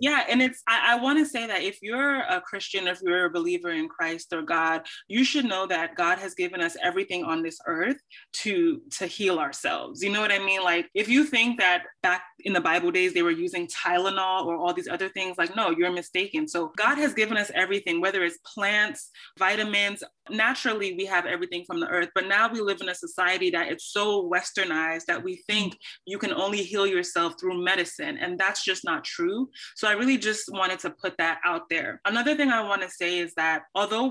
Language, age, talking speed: English, 20-39, 220 wpm